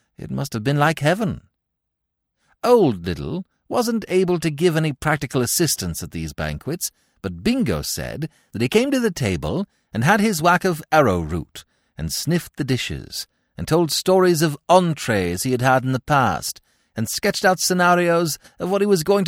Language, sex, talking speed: English, male, 175 wpm